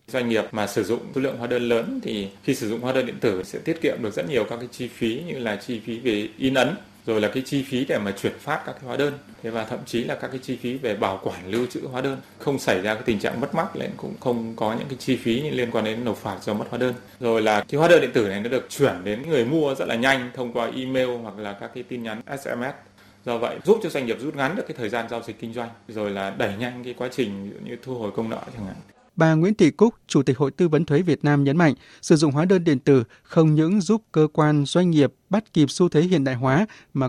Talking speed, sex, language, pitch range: 290 wpm, male, Vietnamese, 120-155 Hz